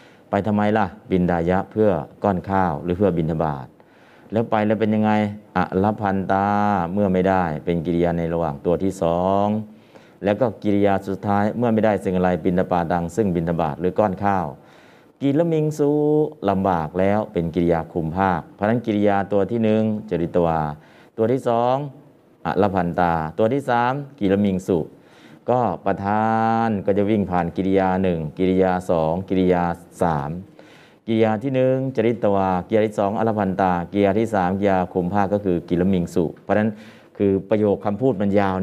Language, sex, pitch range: Thai, male, 90-110 Hz